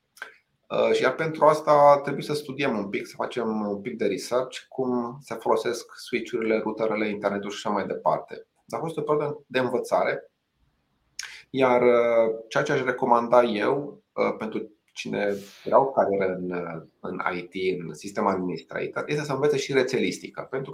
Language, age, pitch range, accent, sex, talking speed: Romanian, 30-49, 100-140 Hz, native, male, 155 wpm